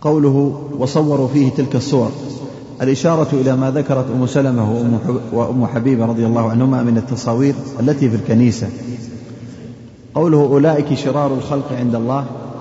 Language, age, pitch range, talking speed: Arabic, 30-49, 115-135 Hz, 130 wpm